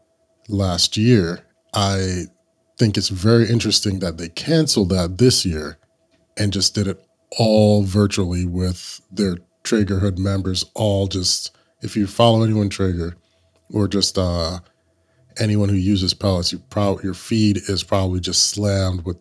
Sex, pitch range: male, 90-105 Hz